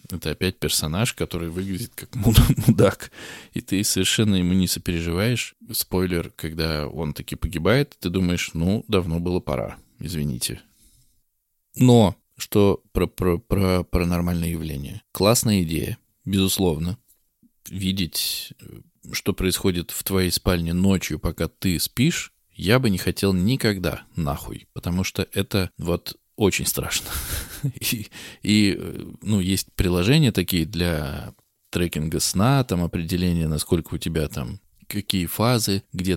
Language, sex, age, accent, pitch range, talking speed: Russian, male, 20-39, native, 85-105 Hz, 125 wpm